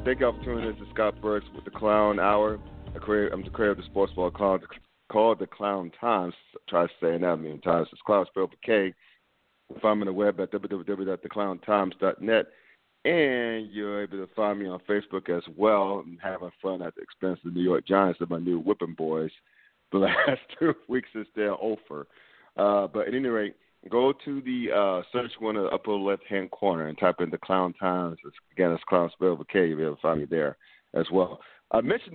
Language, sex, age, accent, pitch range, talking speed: English, male, 40-59, American, 95-115 Hz, 215 wpm